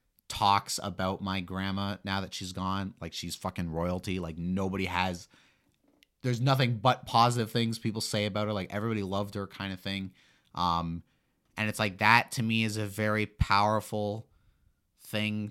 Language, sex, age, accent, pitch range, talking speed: English, male, 30-49, American, 85-105 Hz, 165 wpm